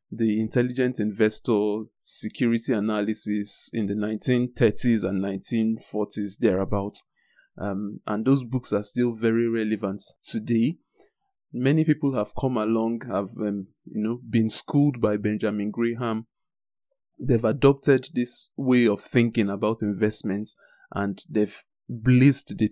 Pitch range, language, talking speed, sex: 105-130 Hz, English, 125 wpm, male